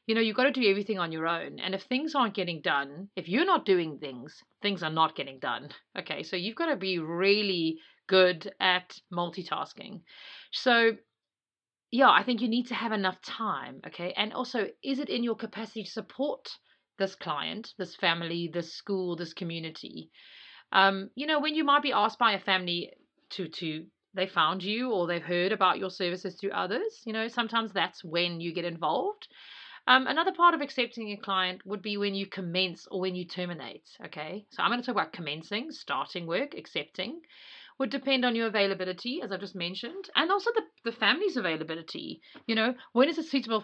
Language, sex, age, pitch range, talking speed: English, female, 40-59, 175-245 Hz, 200 wpm